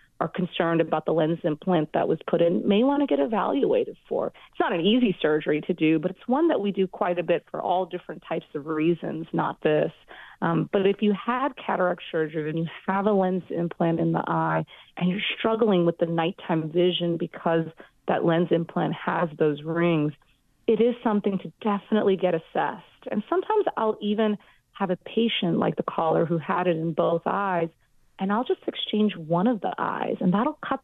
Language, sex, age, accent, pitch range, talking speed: English, female, 30-49, American, 165-205 Hz, 200 wpm